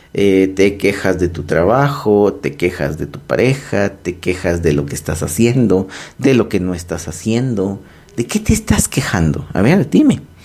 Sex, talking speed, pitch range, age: male, 185 wpm, 85-115 Hz, 40-59